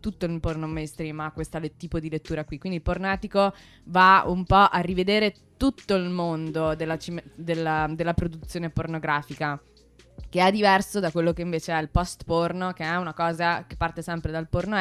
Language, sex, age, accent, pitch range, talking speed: Italian, female, 20-39, native, 160-185 Hz, 195 wpm